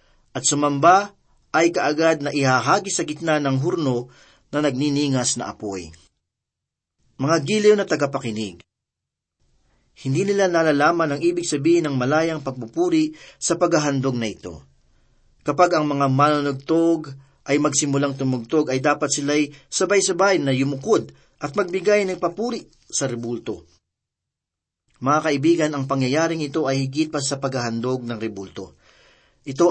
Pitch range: 130-170 Hz